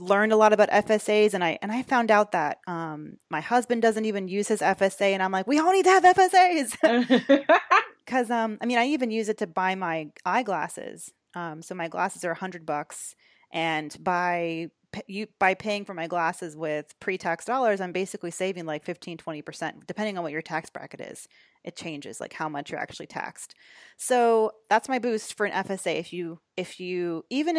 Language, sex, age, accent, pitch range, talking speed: English, female, 30-49, American, 170-215 Hz, 205 wpm